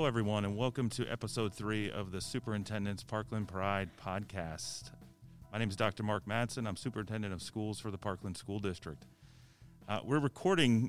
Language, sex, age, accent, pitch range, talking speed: English, male, 40-59, American, 95-120 Hz, 170 wpm